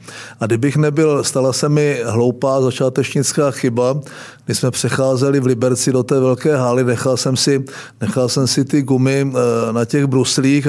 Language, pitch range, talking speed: Czech, 120-140 Hz, 165 wpm